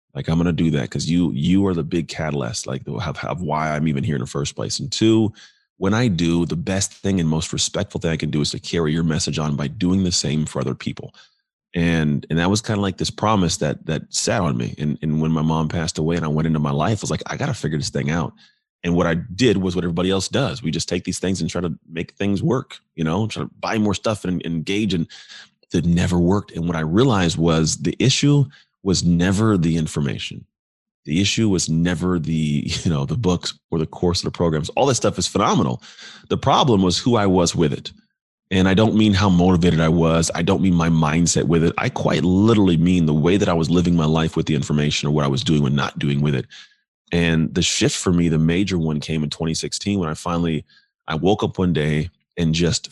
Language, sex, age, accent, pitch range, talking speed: English, male, 30-49, American, 80-95 Hz, 250 wpm